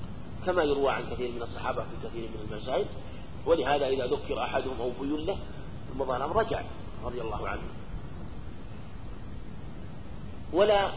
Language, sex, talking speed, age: Arabic, male, 120 wpm, 40-59